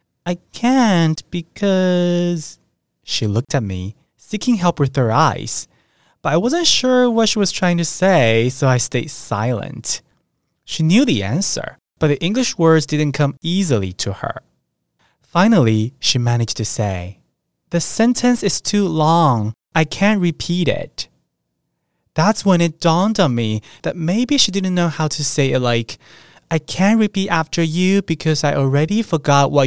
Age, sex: 20-39, male